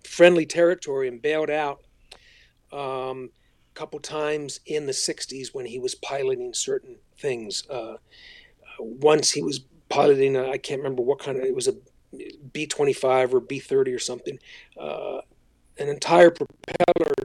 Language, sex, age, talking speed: English, male, 40-59, 140 wpm